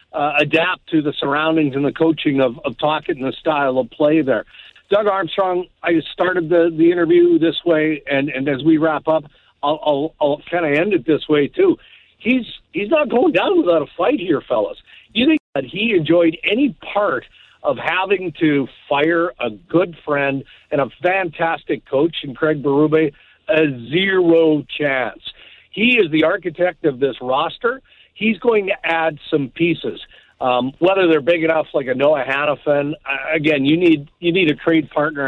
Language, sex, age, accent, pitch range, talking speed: English, male, 50-69, American, 140-170 Hz, 180 wpm